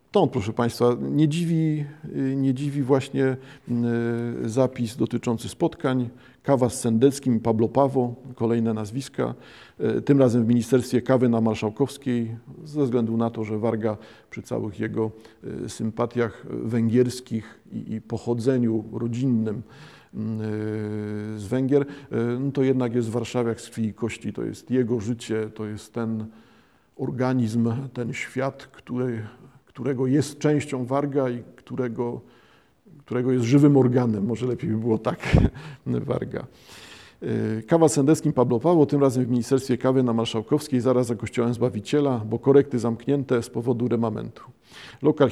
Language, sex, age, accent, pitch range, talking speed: Polish, male, 50-69, native, 115-135 Hz, 130 wpm